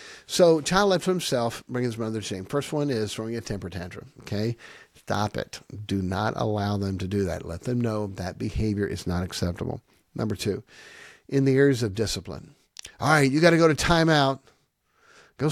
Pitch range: 100-145 Hz